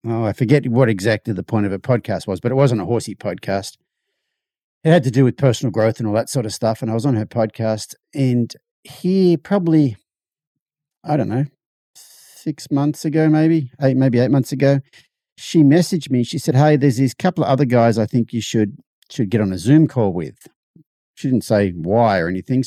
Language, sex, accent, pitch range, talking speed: English, male, Australian, 110-140 Hz, 210 wpm